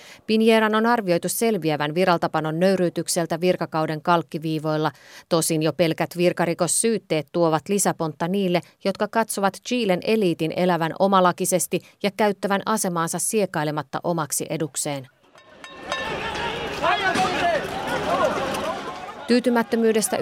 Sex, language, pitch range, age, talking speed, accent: female, Finnish, 160-205 Hz, 30-49, 85 wpm, native